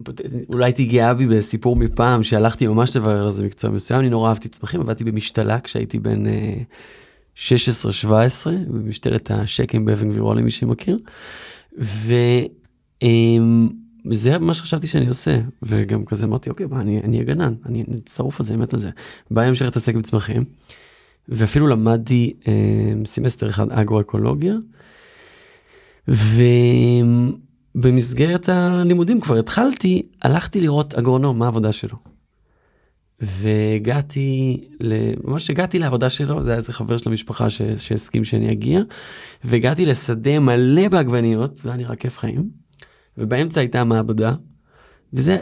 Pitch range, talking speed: 115-145 Hz, 120 wpm